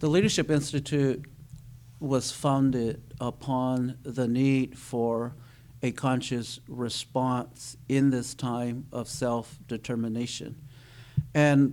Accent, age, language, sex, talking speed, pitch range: American, 50-69, English, male, 90 wpm, 125-140 Hz